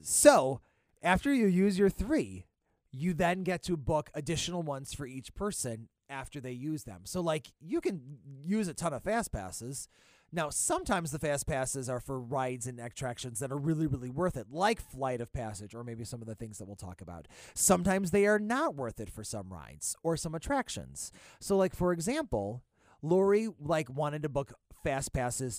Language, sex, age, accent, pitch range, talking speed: English, male, 30-49, American, 125-180 Hz, 195 wpm